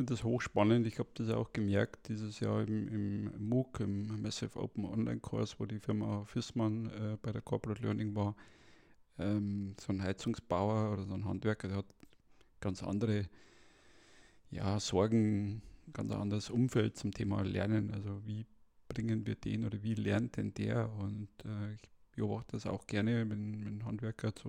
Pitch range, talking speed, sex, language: 105-120 Hz, 170 wpm, male, German